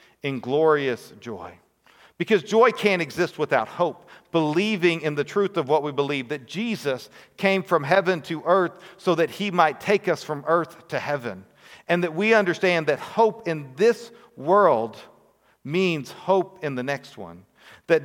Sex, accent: male, American